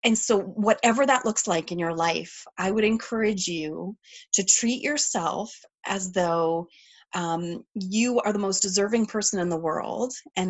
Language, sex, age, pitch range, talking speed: English, female, 30-49, 185-235 Hz, 165 wpm